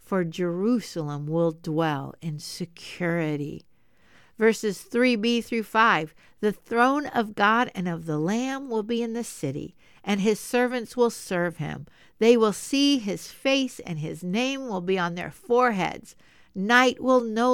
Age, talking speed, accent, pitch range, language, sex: 60-79, 155 wpm, American, 175-245 Hz, English, female